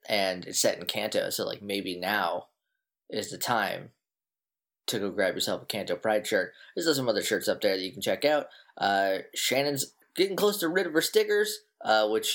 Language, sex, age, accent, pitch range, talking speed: English, male, 20-39, American, 110-165 Hz, 205 wpm